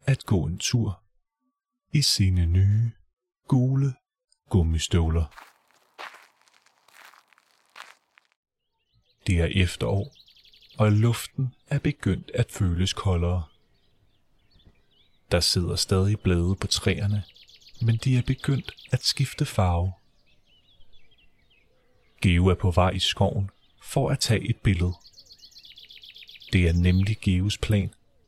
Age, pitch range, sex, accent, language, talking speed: 30-49, 95-120 Hz, male, native, Danish, 100 wpm